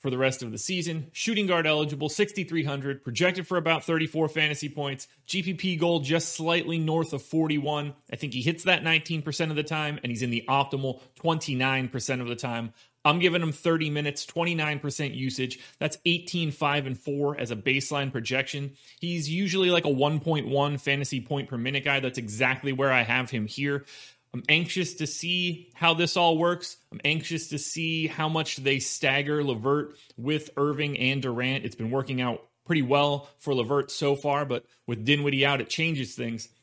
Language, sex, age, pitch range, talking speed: English, male, 30-49, 130-160 Hz, 185 wpm